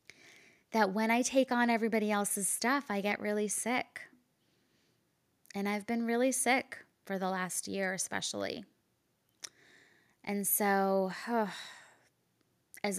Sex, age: female, 20-39